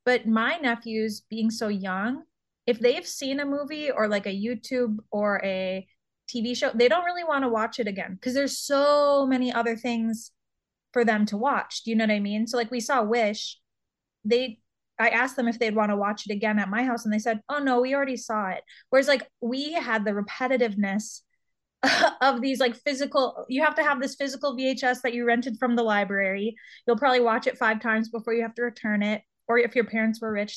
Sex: female